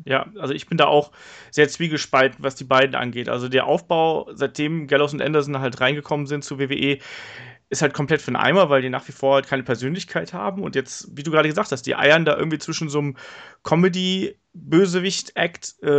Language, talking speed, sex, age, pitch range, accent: German, 205 wpm, male, 30-49, 140-175 Hz, German